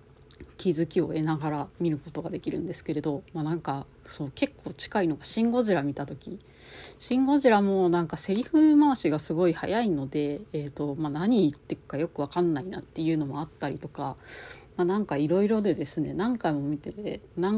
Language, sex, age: Japanese, female, 40-59